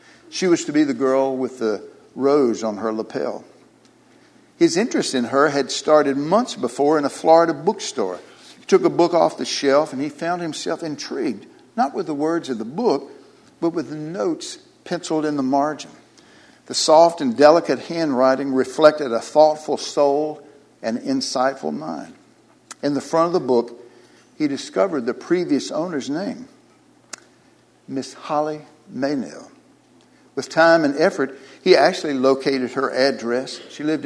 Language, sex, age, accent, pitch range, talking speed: English, male, 60-79, American, 130-180 Hz, 155 wpm